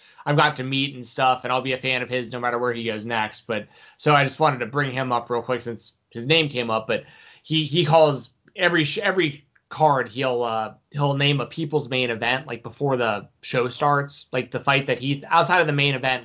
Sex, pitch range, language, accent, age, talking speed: male, 120-150 Hz, English, American, 20-39, 240 wpm